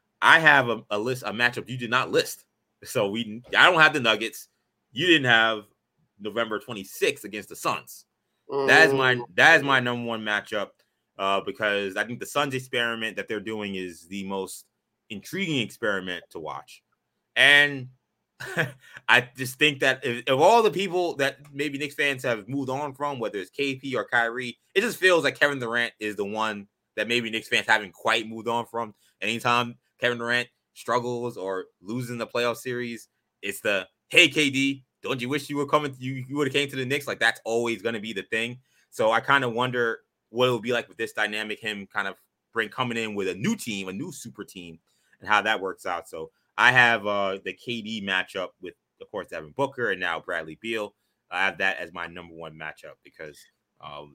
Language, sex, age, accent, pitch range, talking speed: English, male, 20-39, American, 105-135 Hz, 205 wpm